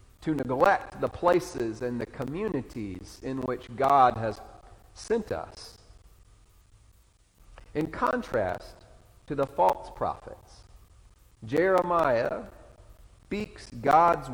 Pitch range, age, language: 105-165 Hz, 50-69, English